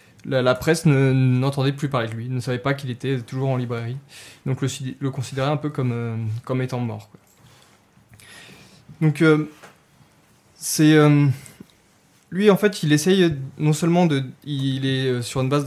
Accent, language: French, French